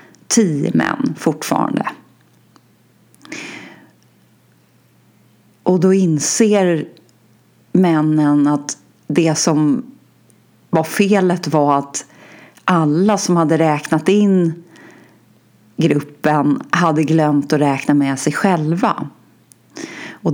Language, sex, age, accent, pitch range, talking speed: Swedish, female, 30-49, native, 145-180 Hz, 85 wpm